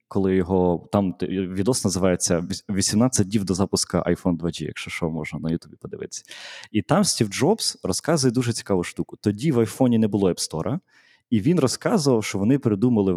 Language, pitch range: Ukrainian, 90-115 Hz